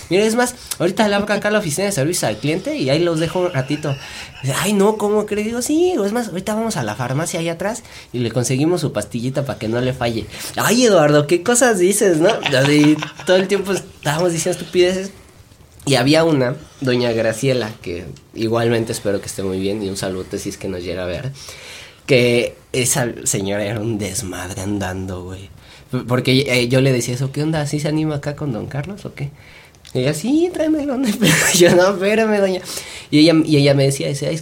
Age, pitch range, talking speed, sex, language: 20-39, 115-170 Hz, 215 wpm, male, Spanish